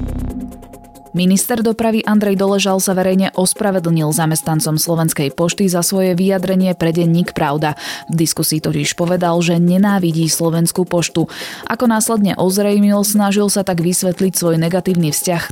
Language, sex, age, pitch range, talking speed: Slovak, female, 20-39, 160-195 Hz, 130 wpm